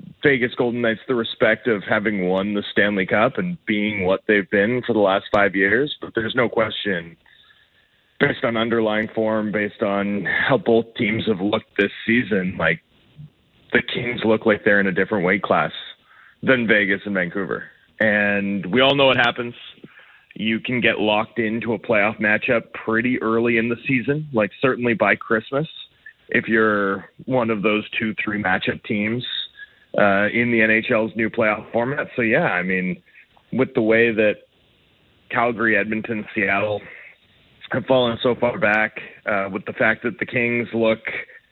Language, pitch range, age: English, 105-120 Hz, 30-49